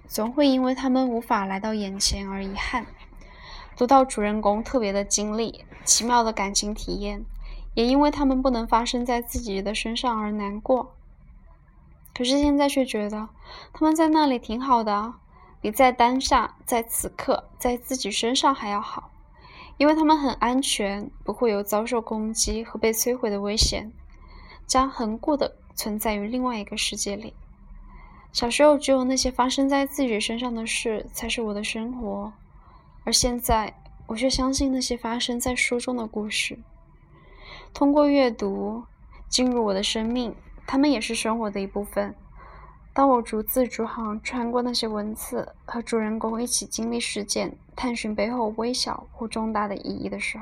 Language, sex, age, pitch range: Chinese, female, 10-29, 215-260 Hz